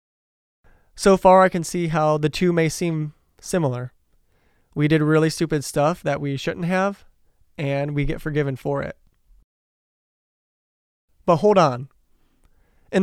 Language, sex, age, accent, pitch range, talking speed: English, male, 20-39, American, 135-165 Hz, 140 wpm